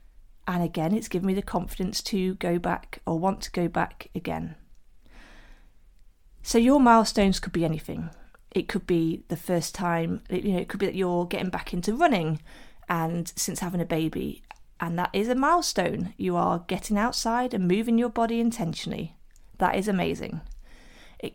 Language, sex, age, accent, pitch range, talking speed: English, female, 30-49, British, 175-230 Hz, 175 wpm